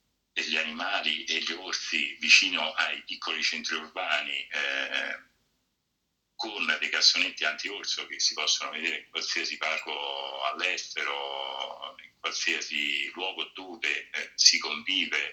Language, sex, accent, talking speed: Italian, male, native, 120 wpm